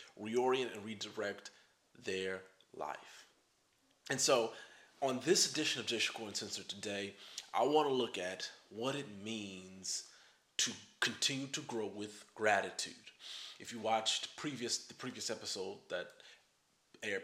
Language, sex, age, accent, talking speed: English, male, 30-49, American, 130 wpm